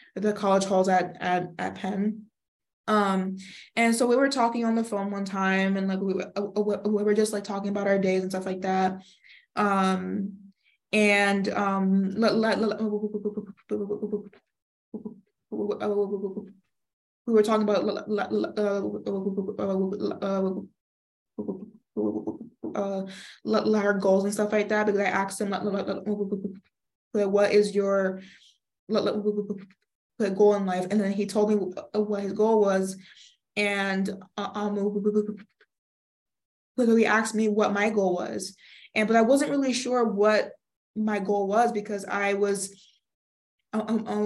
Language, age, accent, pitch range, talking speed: English, 20-39, American, 195-210 Hz, 125 wpm